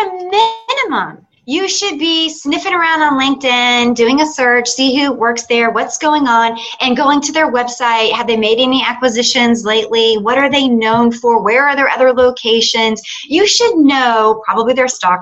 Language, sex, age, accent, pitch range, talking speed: English, female, 30-49, American, 195-275 Hz, 180 wpm